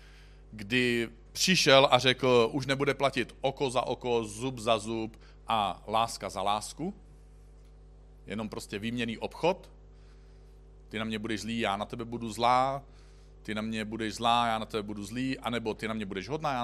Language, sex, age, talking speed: Czech, male, 40-59, 175 wpm